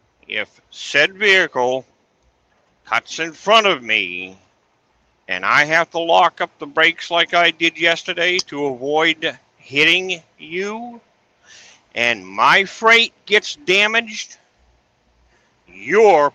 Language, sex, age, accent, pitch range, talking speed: English, male, 50-69, American, 130-195 Hz, 110 wpm